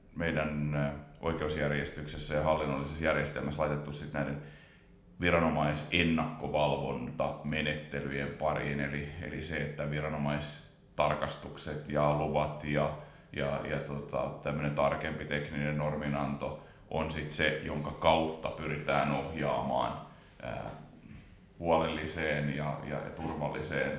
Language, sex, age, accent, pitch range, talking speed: Finnish, male, 30-49, native, 75-80 Hz, 95 wpm